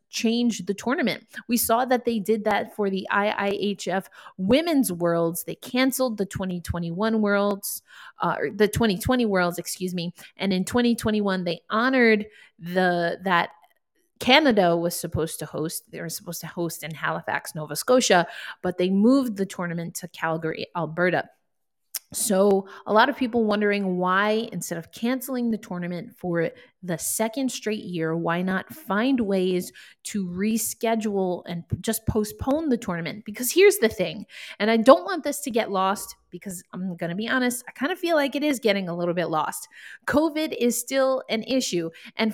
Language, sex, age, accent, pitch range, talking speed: English, female, 30-49, American, 180-235 Hz, 165 wpm